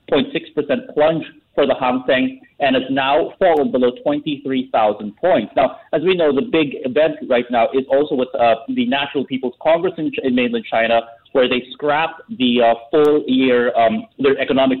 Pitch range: 120-160 Hz